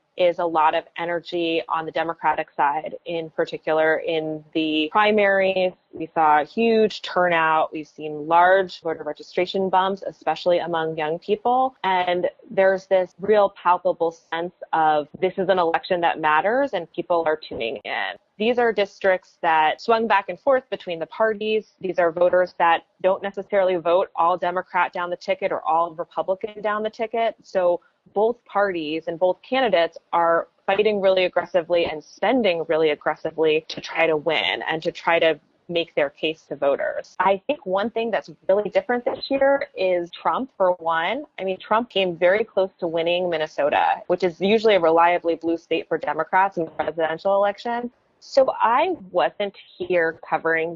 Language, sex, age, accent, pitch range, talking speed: English, female, 20-39, American, 165-200 Hz, 170 wpm